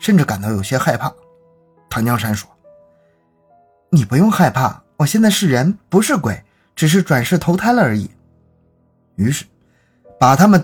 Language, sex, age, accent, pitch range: Chinese, male, 20-39, native, 105-175 Hz